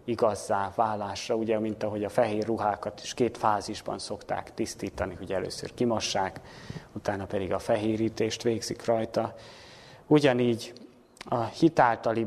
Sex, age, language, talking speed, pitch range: male, 30-49, Hungarian, 120 wpm, 105-125 Hz